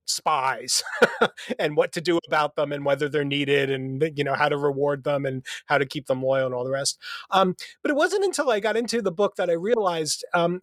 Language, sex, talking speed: English, male, 235 wpm